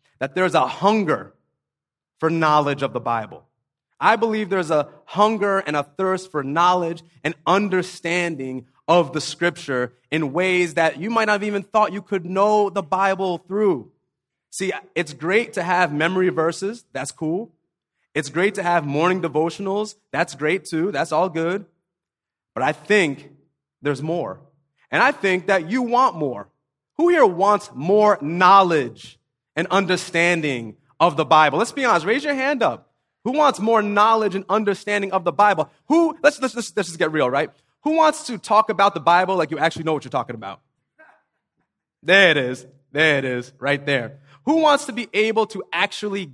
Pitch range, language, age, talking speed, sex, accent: 155-205 Hz, English, 30-49, 175 wpm, male, American